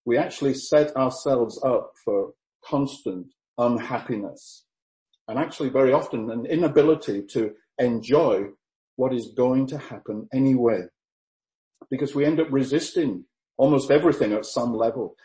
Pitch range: 115-145 Hz